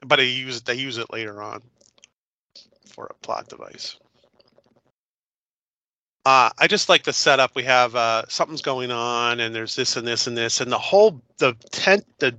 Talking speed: 180 wpm